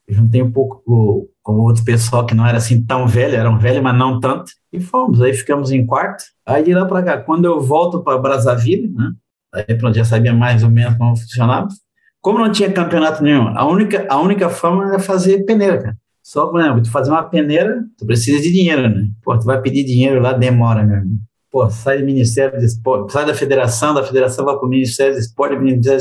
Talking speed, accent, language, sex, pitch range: 225 wpm, Brazilian, Portuguese, male, 115-150 Hz